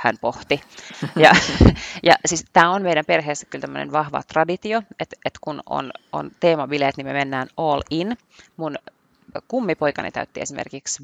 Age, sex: 30-49, female